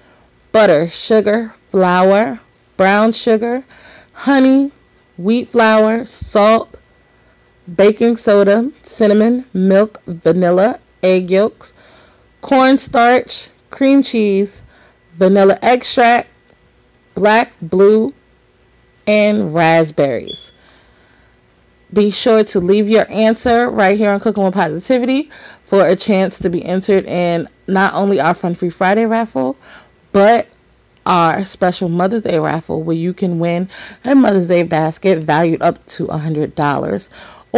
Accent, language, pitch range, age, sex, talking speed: American, English, 180-235 Hz, 30-49, female, 110 wpm